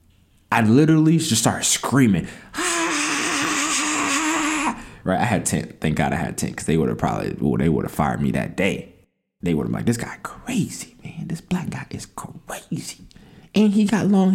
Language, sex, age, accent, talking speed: English, male, 20-39, American, 190 wpm